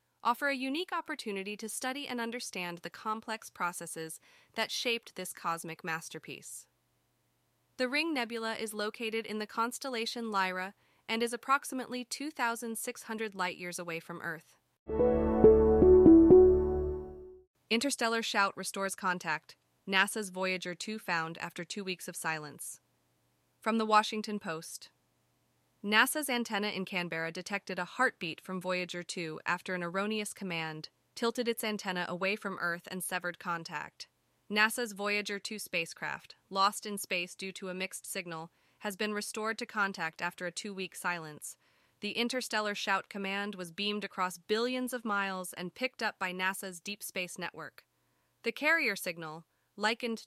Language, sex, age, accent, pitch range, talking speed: English, female, 20-39, American, 180-230 Hz, 140 wpm